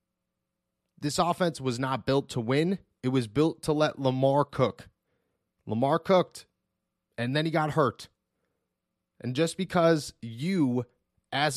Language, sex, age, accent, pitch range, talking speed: English, male, 30-49, American, 125-160 Hz, 135 wpm